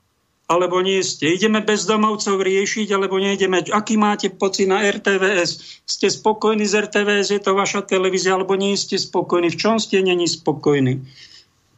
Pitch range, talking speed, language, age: 150-195 Hz, 155 wpm, Slovak, 50-69